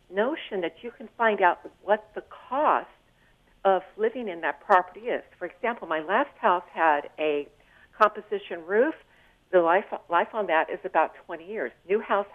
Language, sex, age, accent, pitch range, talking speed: English, female, 60-79, American, 170-230 Hz, 170 wpm